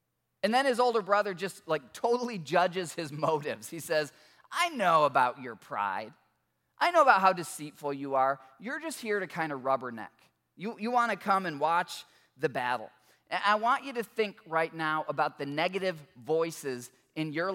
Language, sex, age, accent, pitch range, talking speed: English, male, 20-39, American, 155-215 Hz, 190 wpm